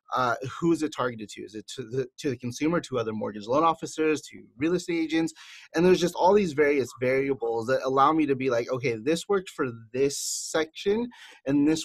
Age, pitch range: 30-49, 130-165 Hz